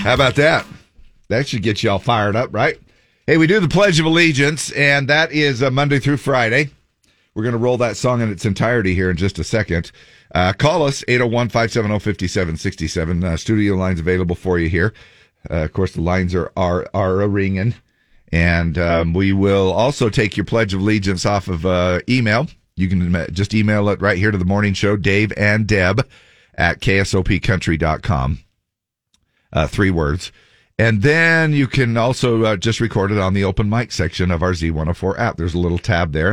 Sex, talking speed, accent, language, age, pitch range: male, 190 wpm, American, English, 40-59, 90-115 Hz